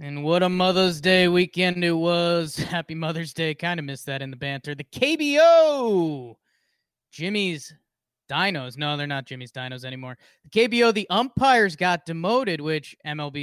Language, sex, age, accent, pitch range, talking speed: English, male, 20-39, American, 145-180 Hz, 160 wpm